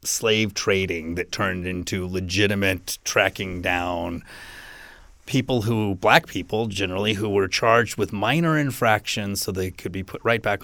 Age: 30-49